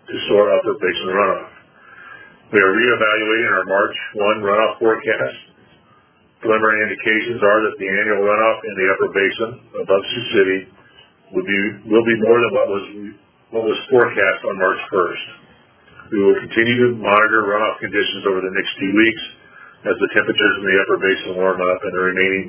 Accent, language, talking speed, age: American, English, 175 wpm, 40-59